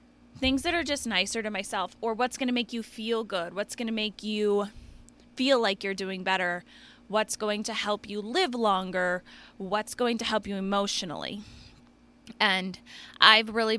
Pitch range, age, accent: 185-230 Hz, 20-39, American